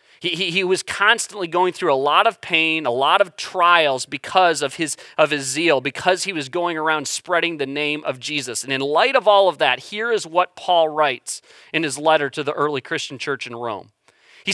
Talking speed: 225 wpm